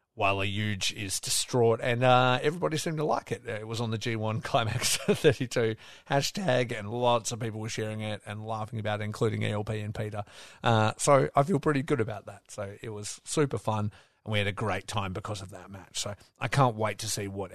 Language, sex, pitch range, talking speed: English, male, 100-120 Hz, 230 wpm